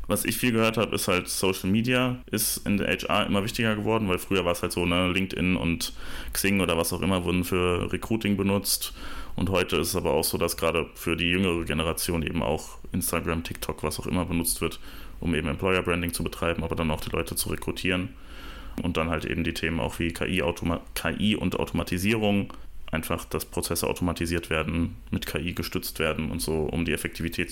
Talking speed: 210 wpm